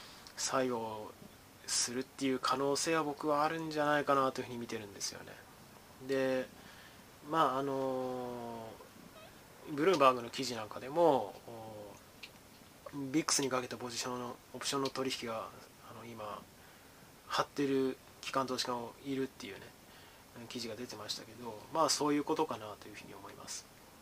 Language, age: Japanese, 20-39